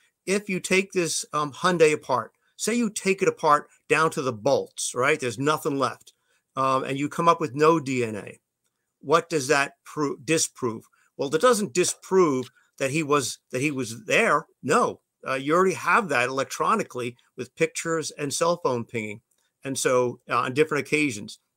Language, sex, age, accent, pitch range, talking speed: English, male, 50-69, American, 135-180 Hz, 175 wpm